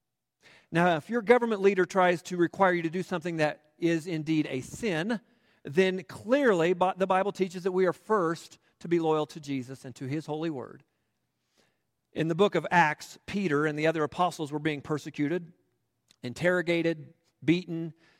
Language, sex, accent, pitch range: English, male, American, 140-180 Hz